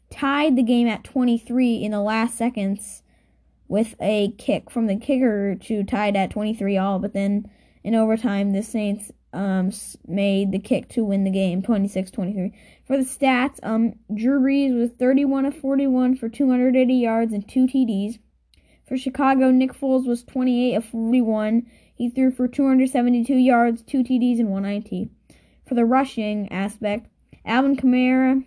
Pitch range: 210-255 Hz